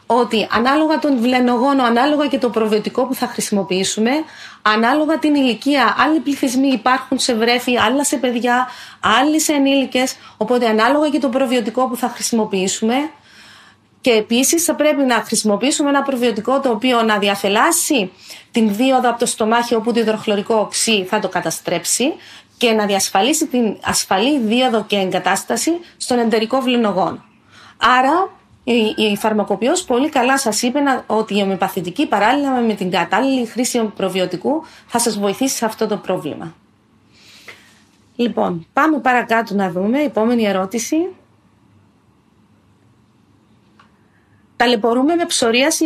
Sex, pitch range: female, 205-270 Hz